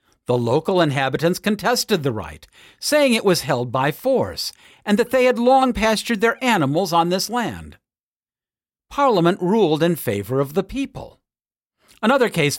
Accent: American